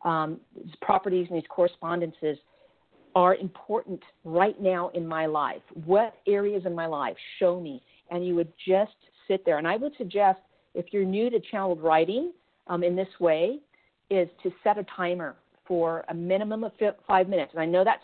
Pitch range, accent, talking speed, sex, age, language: 170-210 Hz, American, 185 wpm, female, 50-69, English